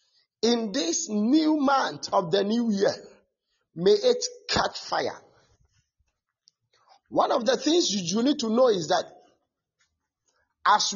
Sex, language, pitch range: male, English, 190-305 Hz